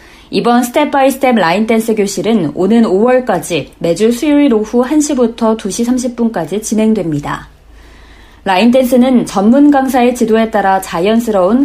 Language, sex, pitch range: Korean, female, 185-250 Hz